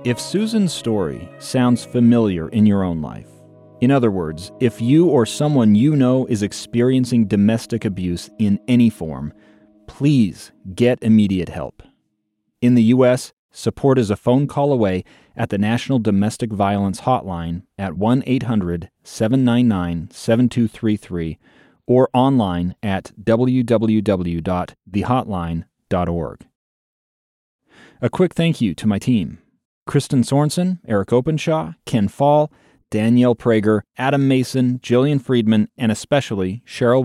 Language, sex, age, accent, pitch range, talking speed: English, male, 30-49, American, 100-135 Hz, 120 wpm